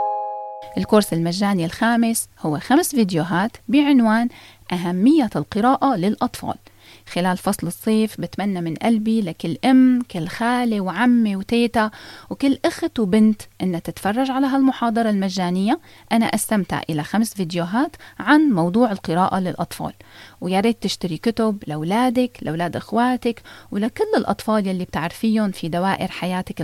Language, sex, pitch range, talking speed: Arabic, female, 175-245 Hz, 115 wpm